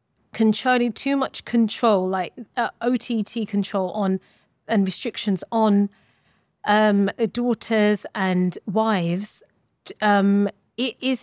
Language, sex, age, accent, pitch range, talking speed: English, female, 30-49, British, 190-230 Hz, 100 wpm